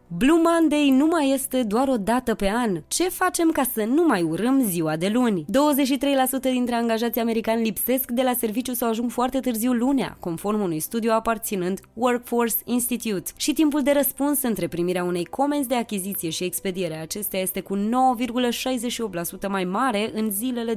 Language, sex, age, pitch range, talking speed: Romanian, female, 20-39, 190-260 Hz, 170 wpm